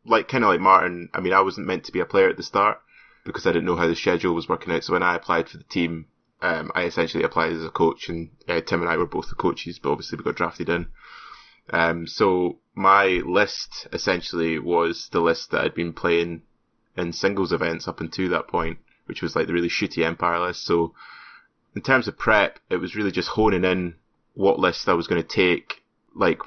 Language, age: English, 20-39